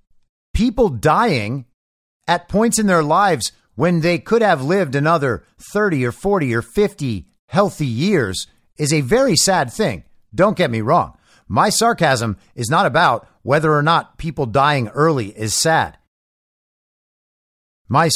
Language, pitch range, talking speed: English, 135-190 Hz, 140 wpm